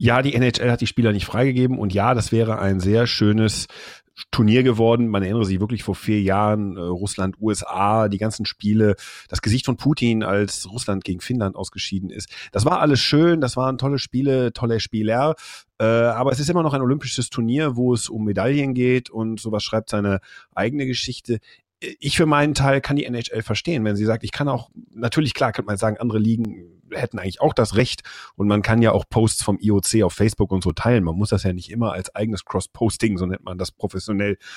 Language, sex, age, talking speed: German, male, 40-59, 210 wpm